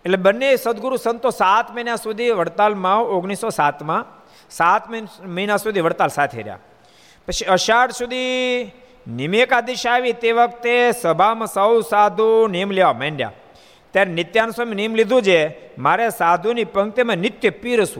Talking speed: 45 wpm